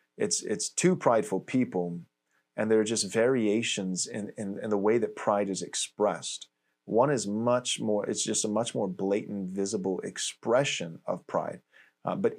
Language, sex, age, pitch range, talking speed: English, male, 30-49, 95-120 Hz, 170 wpm